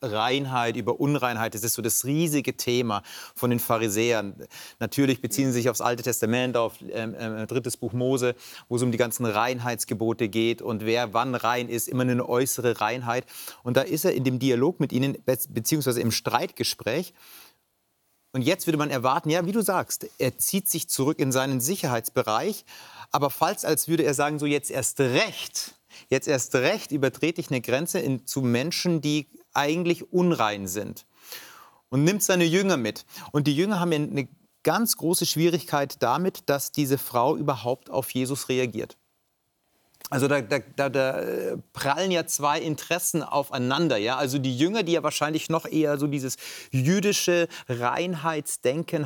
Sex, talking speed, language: male, 165 wpm, German